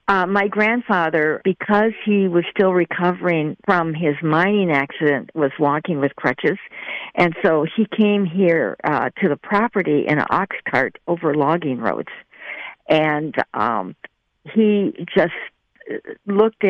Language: English